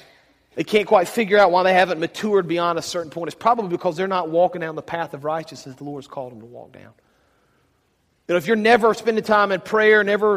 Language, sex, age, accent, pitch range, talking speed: English, male, 40-59, American, 175-230 Hz, 230 wpm